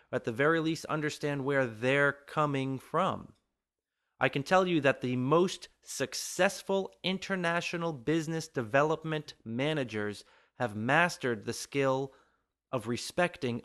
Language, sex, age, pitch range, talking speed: English, male, 30-49, 120-170 Hz, 120 wpm